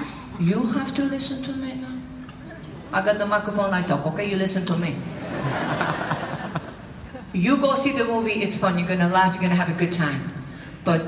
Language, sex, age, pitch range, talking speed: English, female, 50-69, 175-245 Hz, 190 wpm